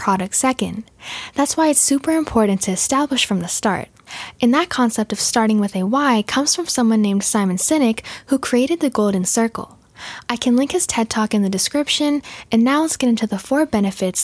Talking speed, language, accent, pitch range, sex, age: 200 wpm, English, American, 200-270 Hz, female, 10-29